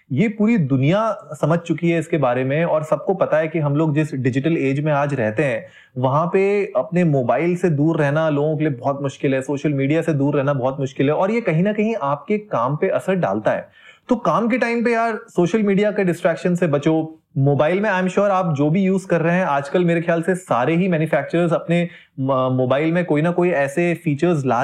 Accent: native